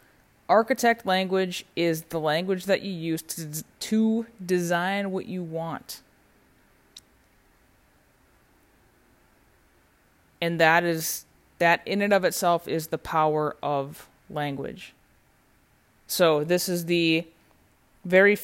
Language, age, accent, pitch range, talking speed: English, 20-39, American, 155-185 Hz, 105 wpm